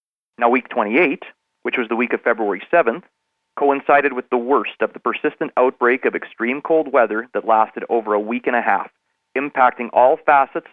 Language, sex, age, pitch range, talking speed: English, male, 30-49, 115-145 Hz, 185 wpm